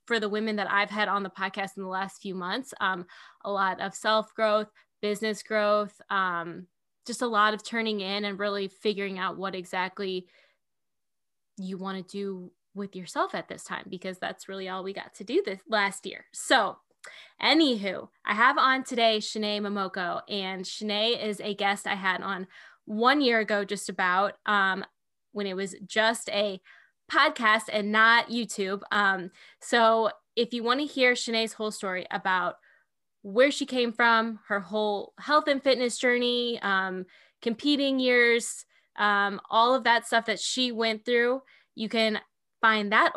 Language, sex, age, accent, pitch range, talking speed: English, female, 10-29, American, 195-230 Hz, 170 wpm